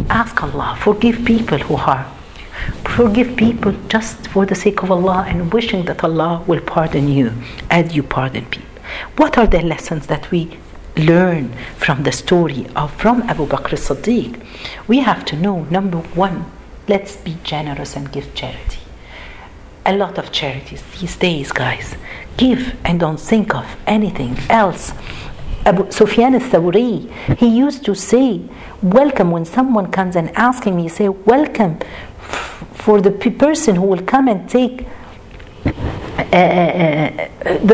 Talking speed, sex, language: 145 wpm, female, Arabic